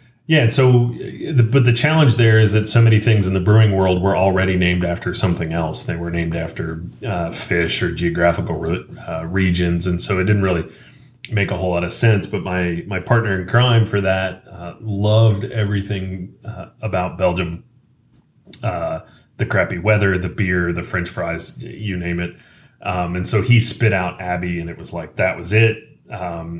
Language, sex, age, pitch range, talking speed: English, male, 30-49, 90-110 Hz, 190 wpm